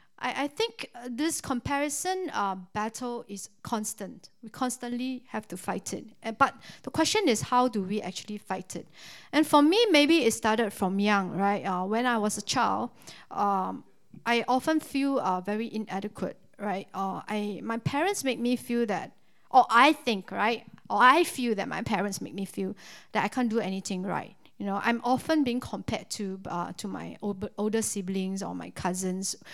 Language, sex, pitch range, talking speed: English, female, 195-250 Hz, 180 wpm